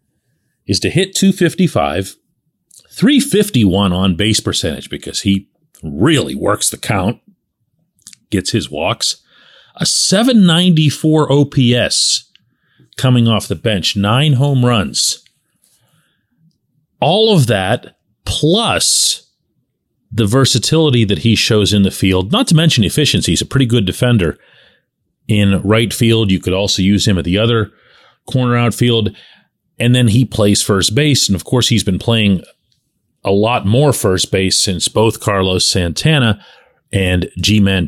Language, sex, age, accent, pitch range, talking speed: English, male, 40-59, American, 100-135 Hz, 135 wpm